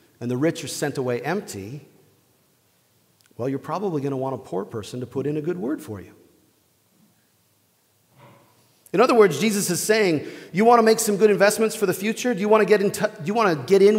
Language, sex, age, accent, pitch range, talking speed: English, male, 40-59, American, 135-190 Hz, 225 wpm